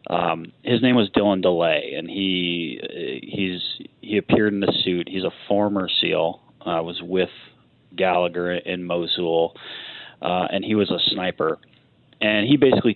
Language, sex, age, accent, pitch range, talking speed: English, male, 30-49, American, 85-105 Hz, 155 wpm